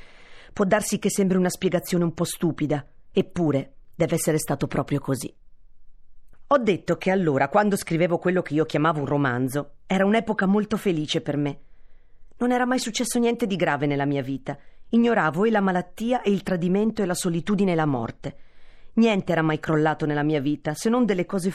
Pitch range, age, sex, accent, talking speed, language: 155-215 Hz, 40-59, female, native, 185 wpm, Italian